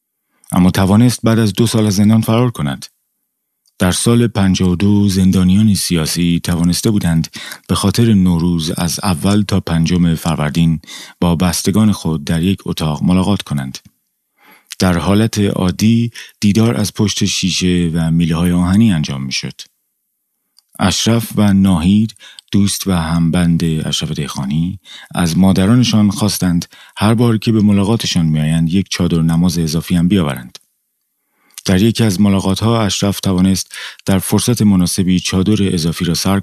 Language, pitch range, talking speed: Persian, 85-105 Hz, 130 wpm